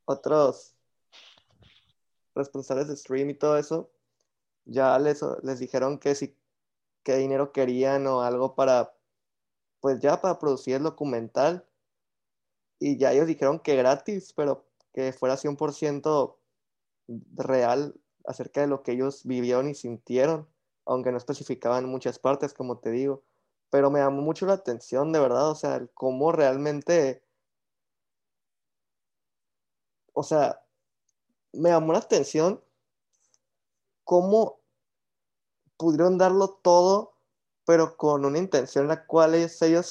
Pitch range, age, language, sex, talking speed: 135-170 Hz, 20-39, Spanish, male, 125 wpm